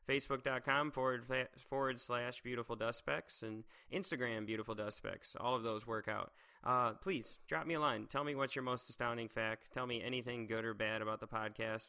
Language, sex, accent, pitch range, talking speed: English, male, American, 110-130 Hz, 195 wpm